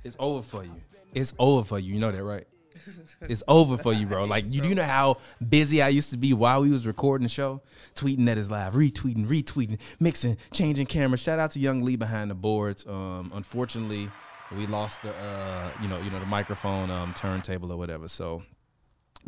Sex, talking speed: male, 215 wpm